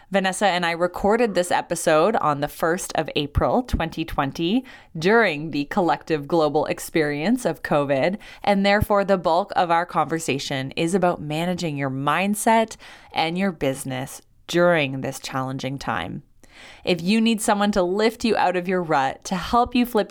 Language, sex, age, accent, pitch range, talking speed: English, female, 20-39, American, 145-190 Hz, 160 wpm